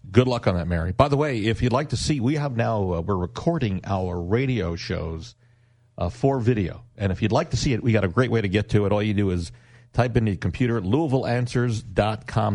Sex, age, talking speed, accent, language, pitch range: male, 50-69, 240 wpm, American, English, 95-120 Hz